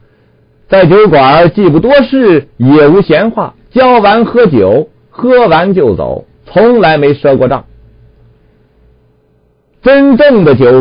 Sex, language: male, Chinese